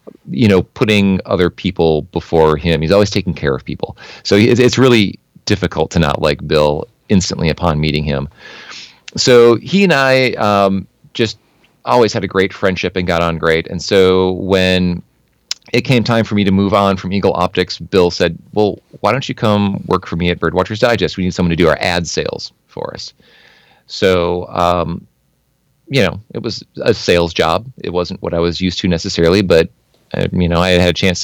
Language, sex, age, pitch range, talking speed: English, male, 30-49, 85-105 Hz, 195 wpm